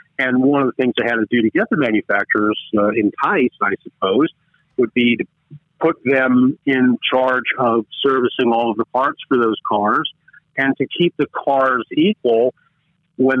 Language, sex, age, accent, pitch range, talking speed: English, male, 50-69, American, 115-150 Hz, 185 wpm